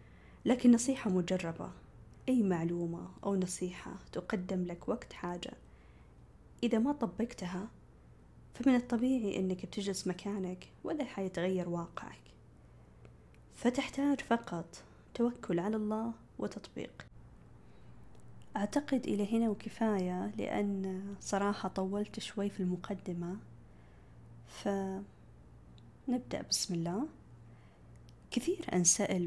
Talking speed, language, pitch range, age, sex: 90 wpm, Arabic, 175-220 Hz, 20-39, female